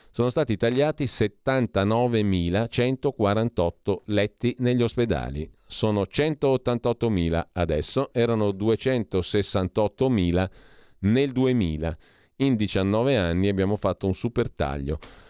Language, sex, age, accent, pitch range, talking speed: Italian, male, 40-59, native, 90-120 Hz, 85 wpm